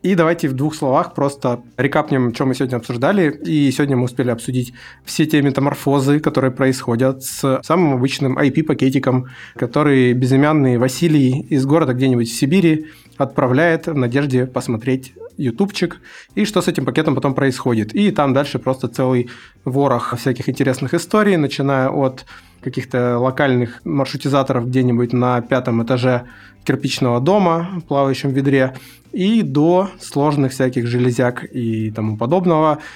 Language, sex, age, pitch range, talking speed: Russian, male, 20-39, 125-150 Hz, 140 wpm